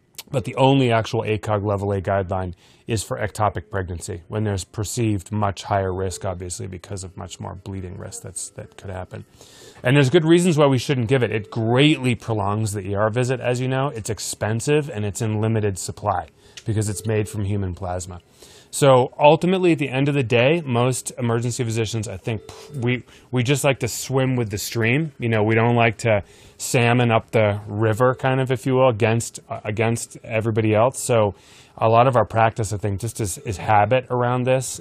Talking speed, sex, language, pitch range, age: 200 wpm, male, English, 105-125 Hz, 20-39